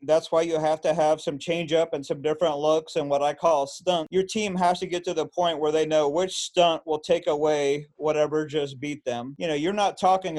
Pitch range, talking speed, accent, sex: 150-175 Hz, 250 wpm, American, male